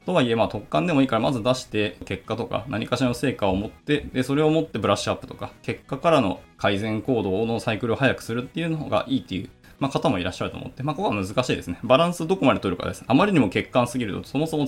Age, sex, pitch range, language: 20-39, male, 95-140 Hz, Japanese